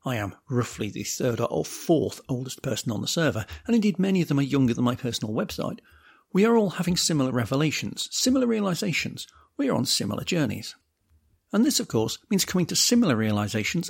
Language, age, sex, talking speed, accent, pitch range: English, 50-69, male, 195 wpm, British, 125-185 Hz